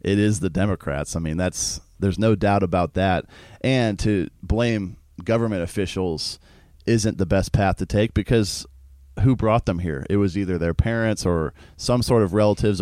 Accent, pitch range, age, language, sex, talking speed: American, 90-110 Hz, 30-49, English, male, 180 wpm